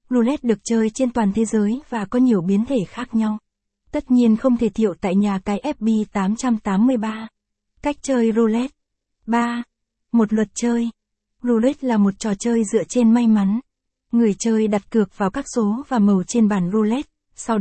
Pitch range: 205-235 Hz